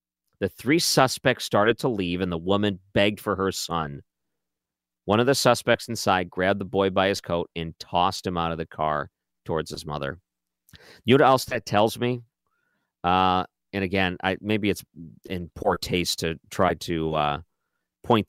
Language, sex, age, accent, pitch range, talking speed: English, male, 40-59, American, 90-120 Hz, 180 wpm